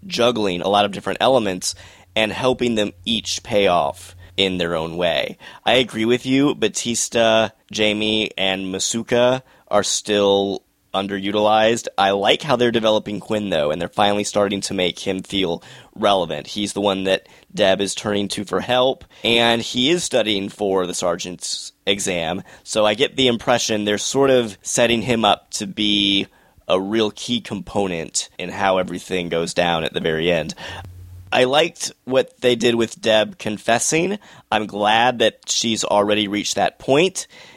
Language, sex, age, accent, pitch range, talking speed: English, male, 20-39, American, 95-115 Hz, 165 wpm